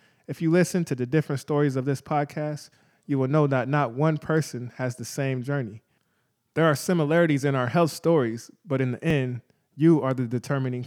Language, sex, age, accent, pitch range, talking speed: English, male, 20-39, American, 125-155 Hz, 200 wpm